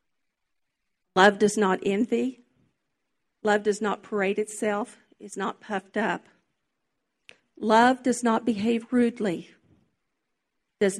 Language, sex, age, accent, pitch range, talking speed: English, female, 50-69, American, 195-245 Hz, 105 wpm